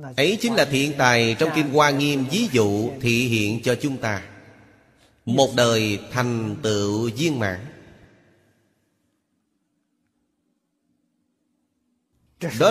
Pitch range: 105-140 Hz